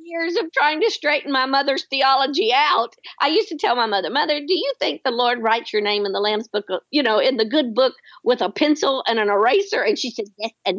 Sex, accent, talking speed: female, American, 250 wpm